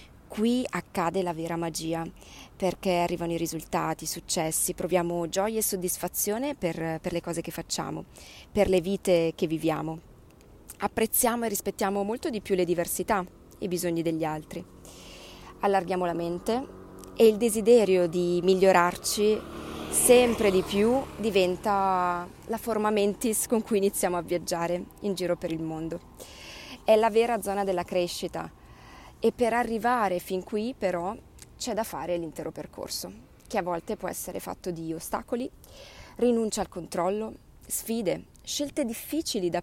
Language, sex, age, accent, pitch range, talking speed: Italian, female, 20-39, native, 175-215 Hz, 145 wpm